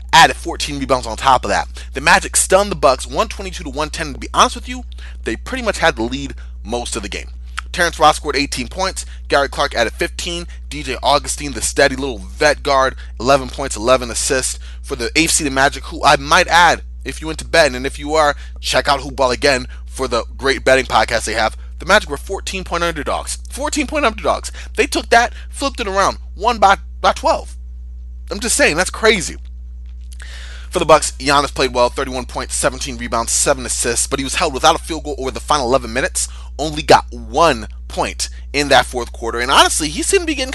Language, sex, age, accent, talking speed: English, male, 30-49, American, 215 wpm